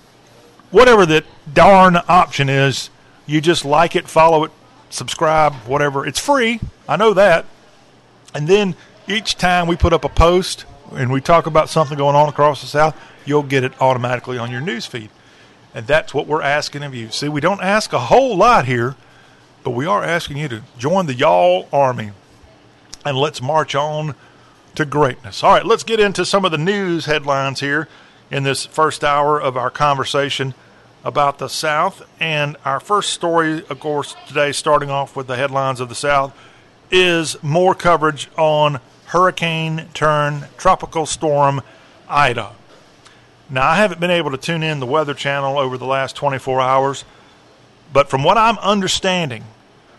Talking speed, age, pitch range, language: 170 wpm, 40-59, 135-165 Hz, English